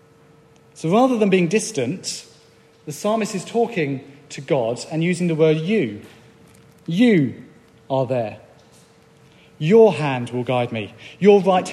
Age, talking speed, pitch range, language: 40-59, 135 wpm, 145-185 Hz, English